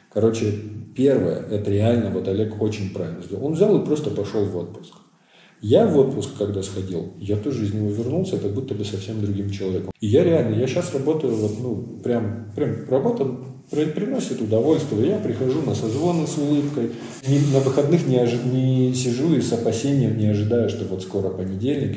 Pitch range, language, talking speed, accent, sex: 105-140 Hz, Russian, 185 wpm, native, male